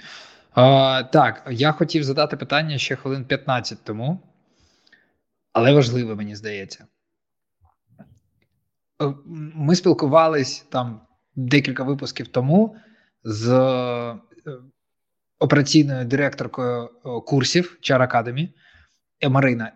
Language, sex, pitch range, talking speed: Ukrainian, male, 125-155 Hz, 75 wpm